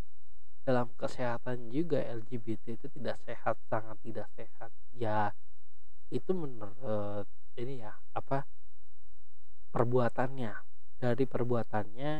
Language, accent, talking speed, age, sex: Indonesian, native, 95 wpm, 20-39, male